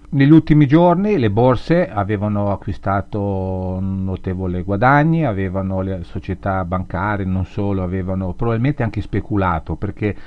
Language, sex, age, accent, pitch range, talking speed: Italian, male, 50-69, native, 95-125 Hz, 115 wpm